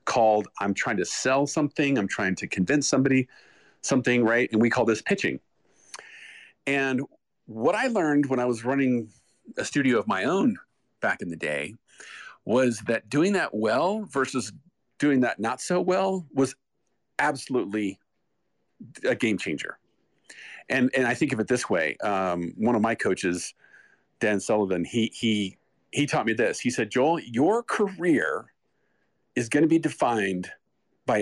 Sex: male